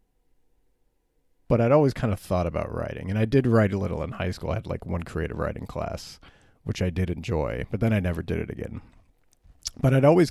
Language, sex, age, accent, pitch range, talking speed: English, male, 30-49, American, 90-115 Hz, 220 wpm